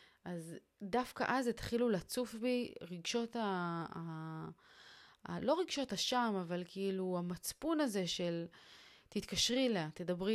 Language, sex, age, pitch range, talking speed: Hebrew, female, 30-49, 165-235 Hz, 130 wpm